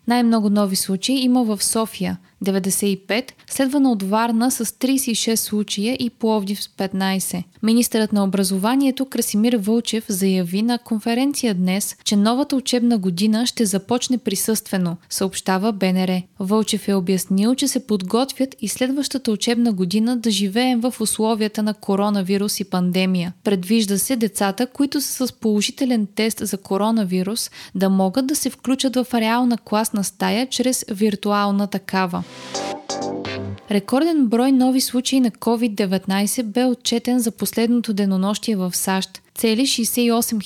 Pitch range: 195-240 Hz